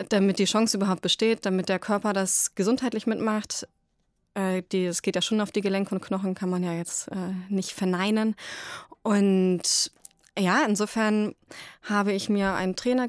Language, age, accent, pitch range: German, 20-39, German, 185-220 Hz